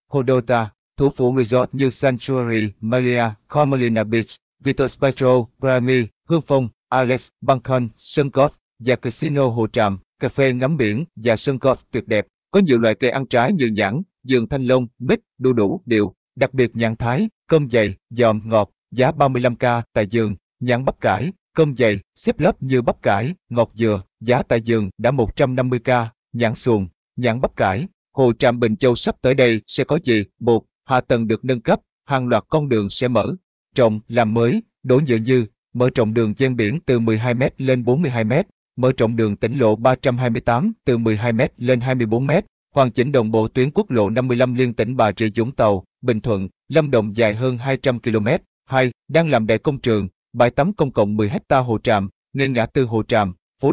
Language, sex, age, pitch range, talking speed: Vietnamese, male, 20-39, 115-135 Hz, 190 wpm